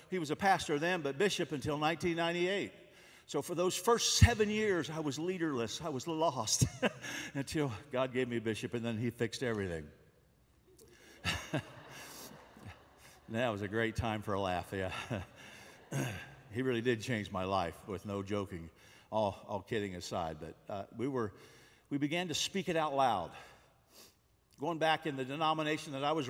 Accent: American